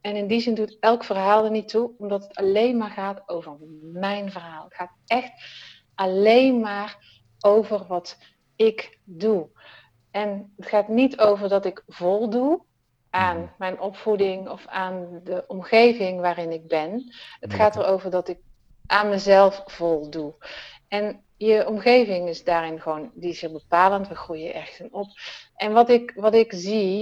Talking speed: 160 wpm